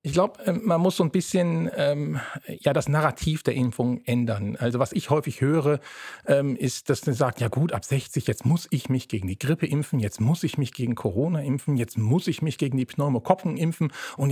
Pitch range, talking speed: 140-185 Hz, 220 wpm